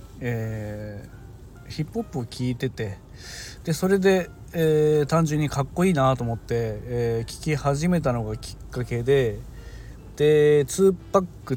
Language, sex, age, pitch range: Japanese, male, 40-59, 110-135 Hz